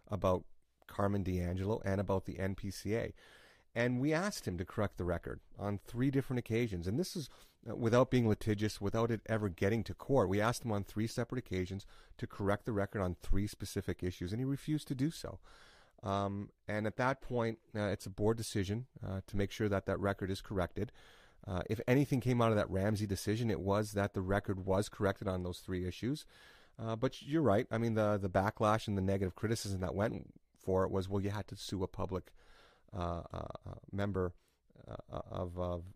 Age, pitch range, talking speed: 30-49, 95-115 Hz, 205 wpm